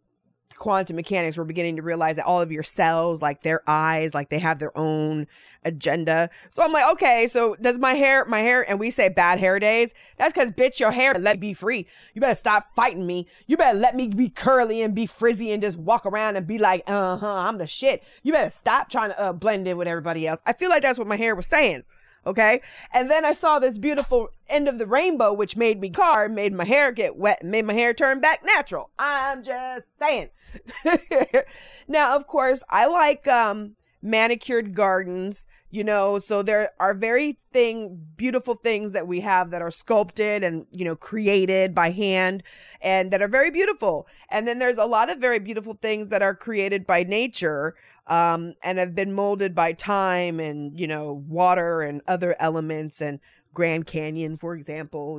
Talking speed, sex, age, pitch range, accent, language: 205 wpm, female, 20-39, 175-245 Hz, American, English